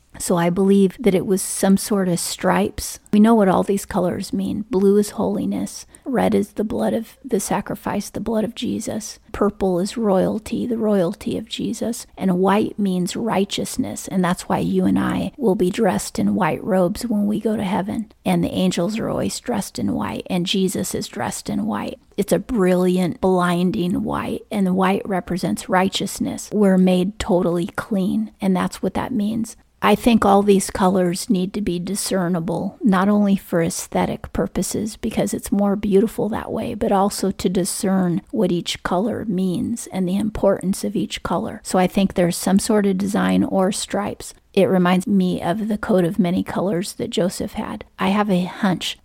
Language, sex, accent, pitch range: English, female, American, 185-215 Hz